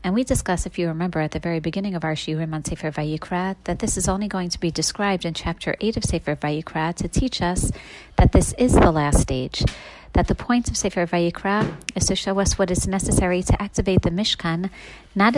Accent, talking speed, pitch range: American, 220 wpm, 170-210 Hz